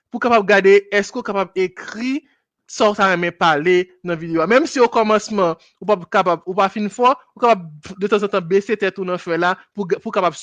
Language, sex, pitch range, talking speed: French, male, 175-225 Hz, 205 wpm